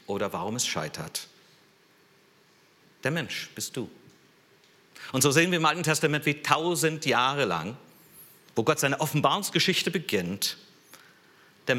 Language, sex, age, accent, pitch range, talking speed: German, male, 50-69, German, 95-145 Hz, 125 wpm